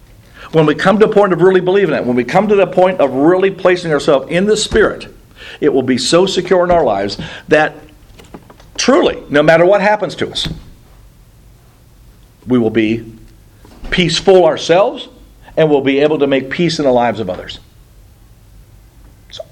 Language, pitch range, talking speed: English, 135-195 Hz, 175 wpm